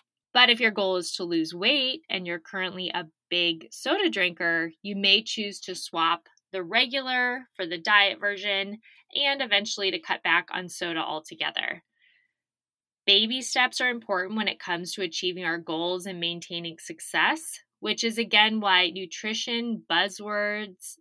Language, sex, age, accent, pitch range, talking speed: English, female, 20-39, American, 175-230 Hz, 155 wpm